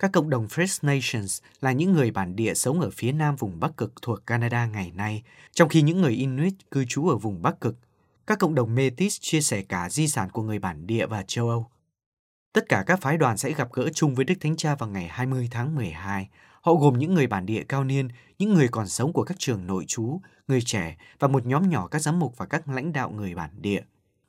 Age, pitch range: 20-39, 110-155 Hz